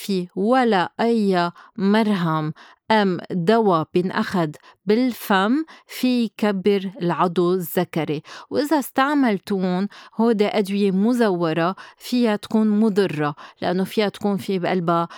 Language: Arabic